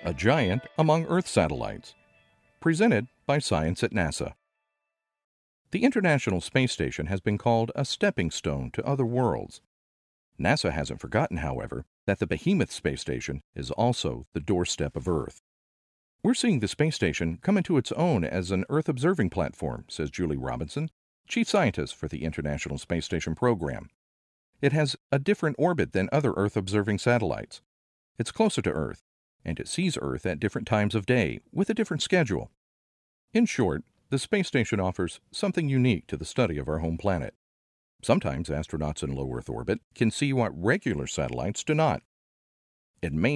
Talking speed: 165 wpm